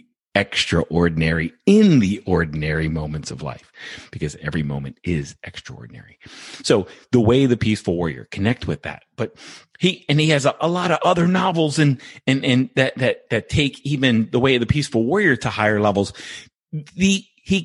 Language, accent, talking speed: English, American, 175 wpm